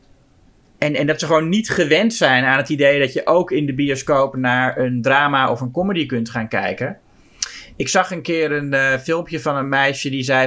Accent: Dutch